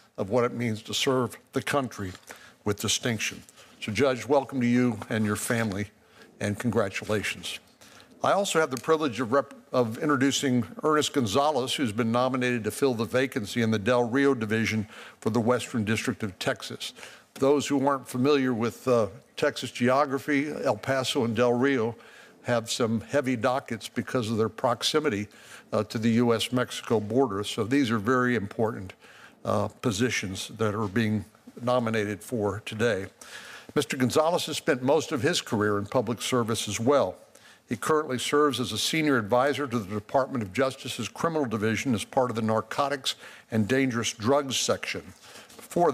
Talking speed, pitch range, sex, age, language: 165 wpm, 110-135 Hz, male, 60-79, English